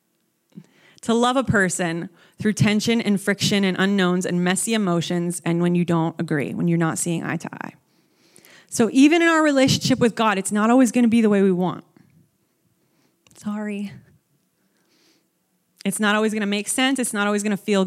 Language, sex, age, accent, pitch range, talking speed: English, female, 30-49, American, 180-260 Hz, 190 wpm